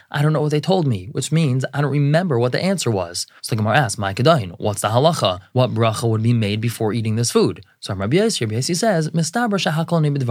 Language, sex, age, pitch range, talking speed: English, male, 20-39, 115-150 Hz, 245 wpm